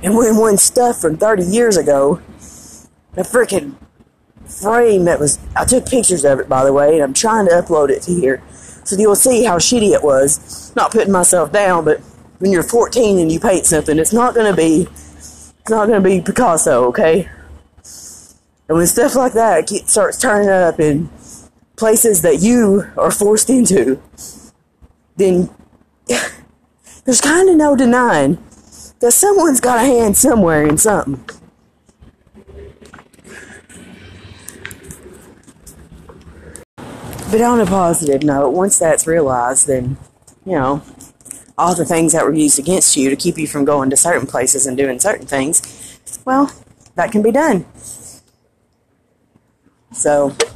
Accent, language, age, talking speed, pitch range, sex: American, English, 20-39, 150 wpm, 135-215 Hz, female